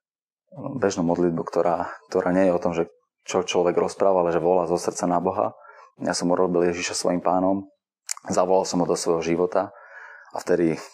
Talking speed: 180 wpm